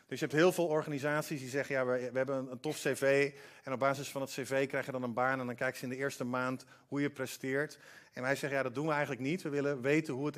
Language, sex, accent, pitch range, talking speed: Dutch, male, Dutch, 135-175 Hz, 300 wpm